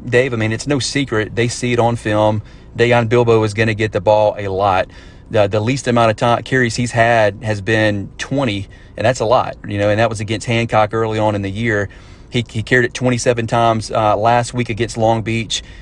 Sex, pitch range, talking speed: male, 110-125 Hz, 230 wpm